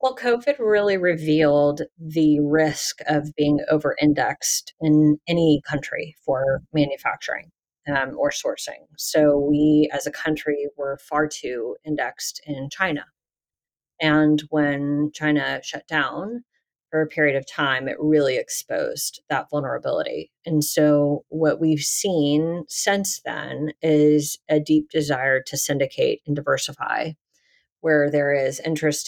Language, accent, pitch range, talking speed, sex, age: English, American, 145-160 Hz, 130 wpm, female, 30-49